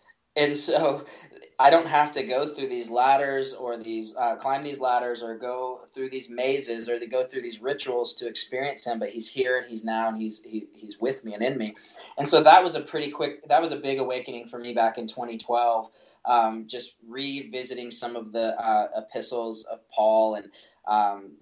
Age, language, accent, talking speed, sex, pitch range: 20-39, English, American, 205 wpm, male, 110-130 Hz